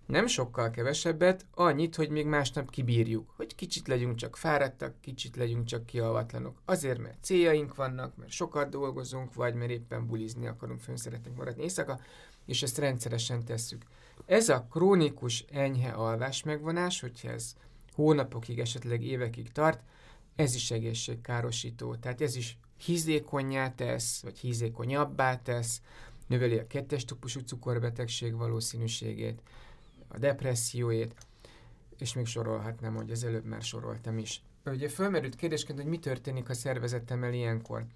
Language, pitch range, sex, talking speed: English, 115-140 Hz, male, 135 wpm